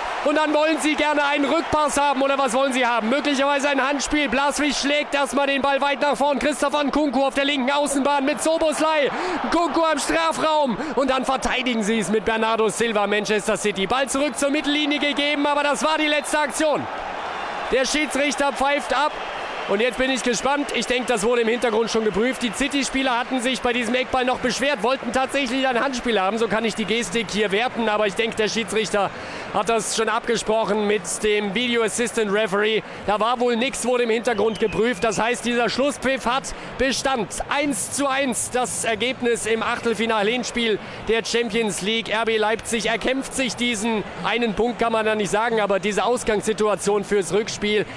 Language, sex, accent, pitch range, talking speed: German, male, German, 210-275 Hz, 185 wpm